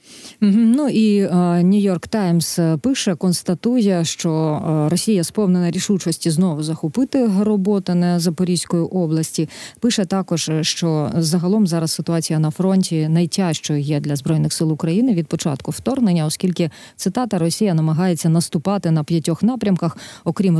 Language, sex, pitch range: Ukrainian, female, 160-195 Hz